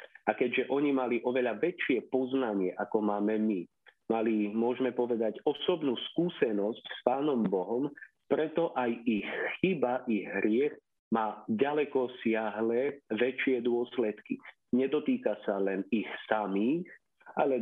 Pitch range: 110-130 Hz